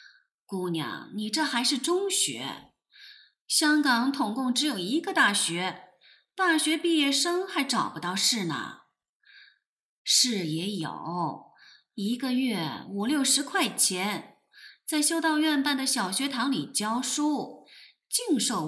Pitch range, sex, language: 200-305 Hz, female, Chinese